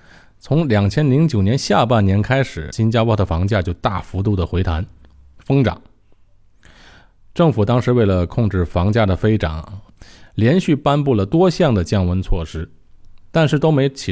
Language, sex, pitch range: Chinese, male, 90-120 Hz